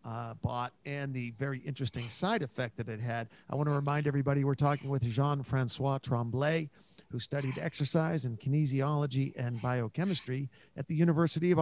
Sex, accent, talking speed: male, American, 165 wpm